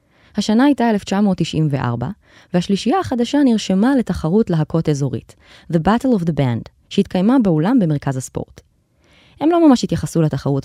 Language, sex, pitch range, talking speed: Hebrew, female, 155-230 Hz, 130 wpm